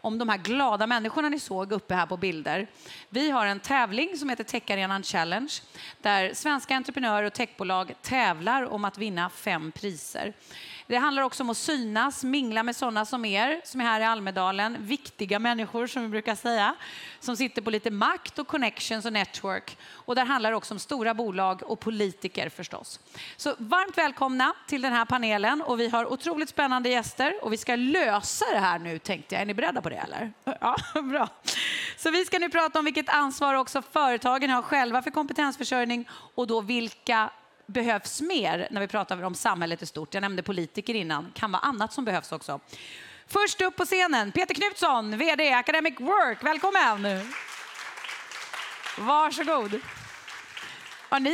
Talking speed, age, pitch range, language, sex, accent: 180 wpm, 30-49, 210-285 Hz, Swedish, female, native